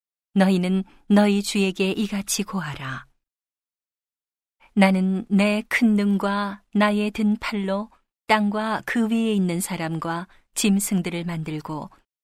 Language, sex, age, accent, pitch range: Korean, female, 40-59, native, 175-205 Hz